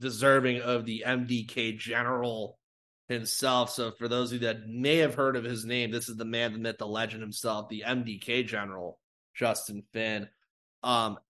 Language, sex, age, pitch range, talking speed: English, male, 30-49, 115-145 Hz, 175 wpm